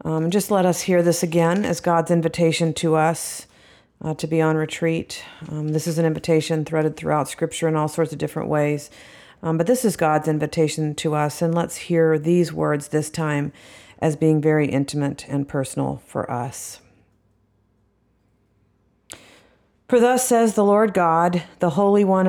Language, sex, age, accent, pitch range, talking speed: English, female, 40-59, American, 150-180 Hz, 170 wpm